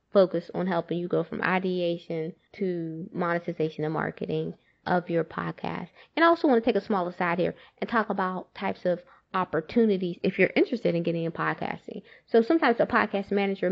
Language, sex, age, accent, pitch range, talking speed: English, female, 20-39, American, 175-215 Hz, 185 wpm